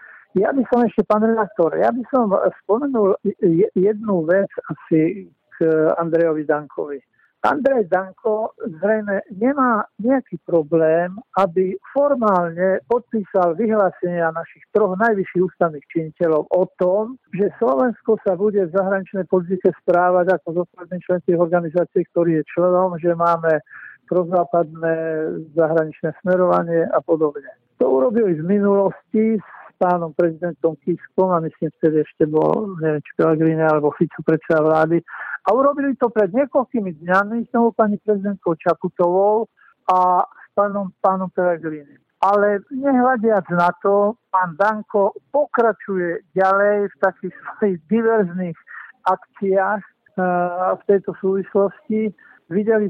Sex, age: male, 50-69